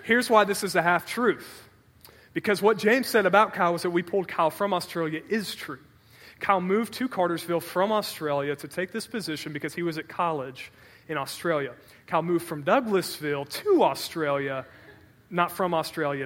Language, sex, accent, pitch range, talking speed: English, male, American, 150-200 Hz, 175 wpm